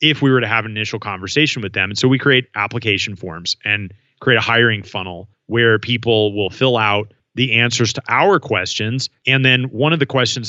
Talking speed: 210 wpm